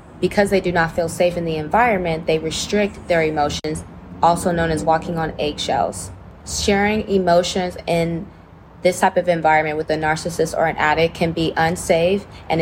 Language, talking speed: English, 170 wpm